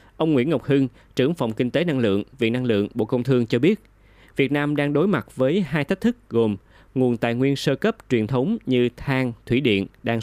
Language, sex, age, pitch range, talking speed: Vietnamese, male, 20-39, 105-135 Hz, 235 wpm